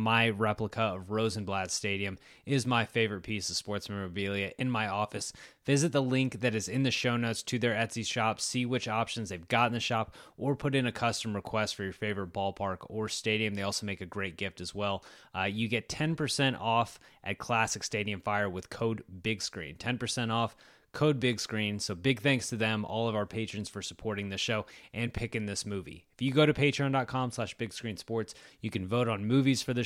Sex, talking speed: male, 210 wpm